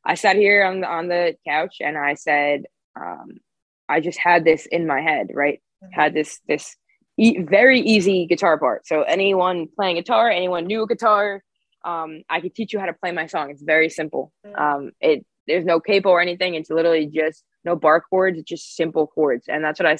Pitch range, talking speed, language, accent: 155-195 Hz, 205 wpm, English, American